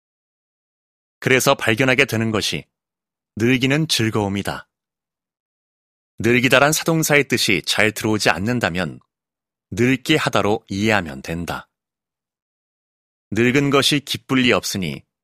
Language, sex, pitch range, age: Korean, male, 100-130 Hz, 30-49